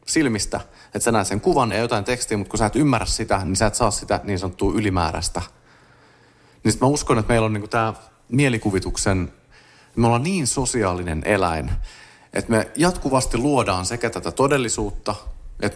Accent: native